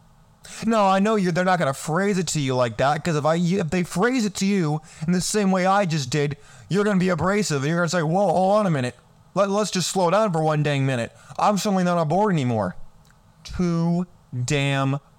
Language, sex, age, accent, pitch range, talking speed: English, male, 20-39, American, 155-200 Hz, 245 wpm